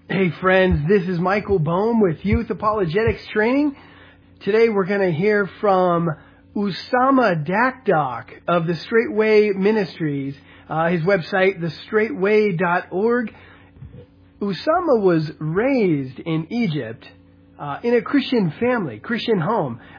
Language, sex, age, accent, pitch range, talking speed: English, male, 40-59, American, 160-215 Hz, 115 wpm